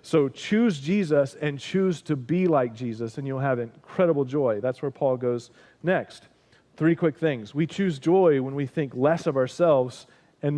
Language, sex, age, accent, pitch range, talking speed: English, male, 40-59, American, 140-170 Hz, 180 wpm